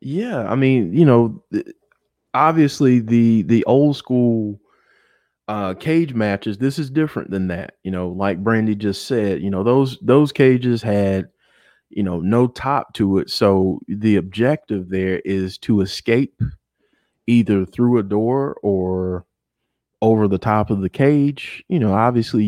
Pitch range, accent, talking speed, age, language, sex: 95-120 Hz, American, 150 wpm, 30-49, English, male